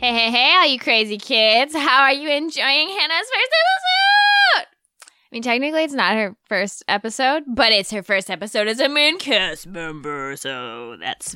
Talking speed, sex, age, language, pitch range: 180 wpm, female, 10-29, English, 195-270 Hz